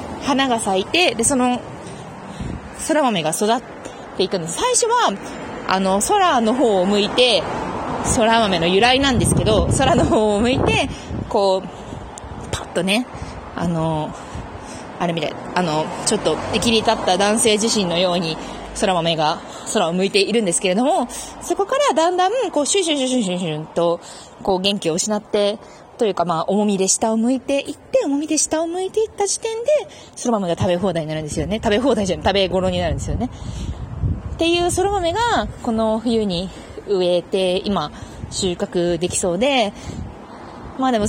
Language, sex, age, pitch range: Japanese, female, 20-39, 185-280 Hz